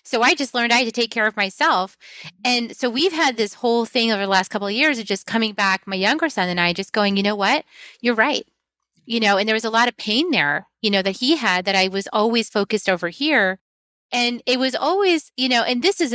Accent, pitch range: American, 190-245 Hz